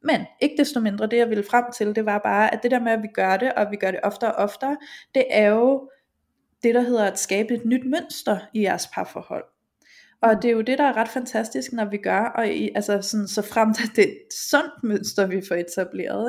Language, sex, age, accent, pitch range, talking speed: Danish, female, 20-39, native, 210-270 Hz, 245 wpm